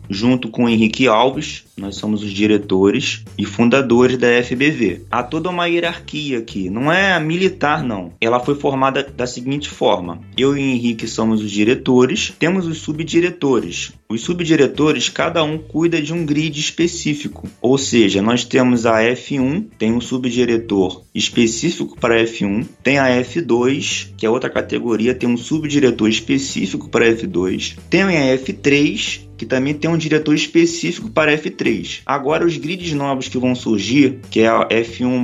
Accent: Brazilian